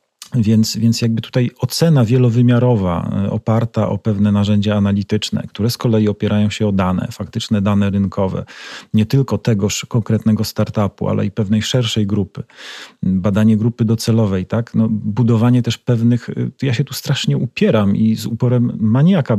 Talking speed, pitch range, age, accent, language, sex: 150 wpm, 100-120 Hz, 40-59, native, Polish, male